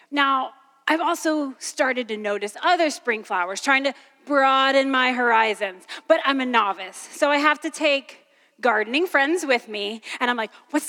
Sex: female